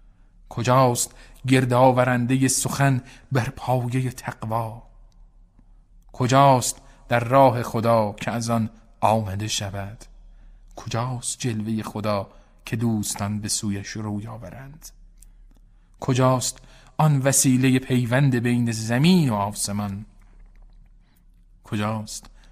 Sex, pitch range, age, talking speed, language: male, 100-130 Hz, 40-59, 85 wpm, Persian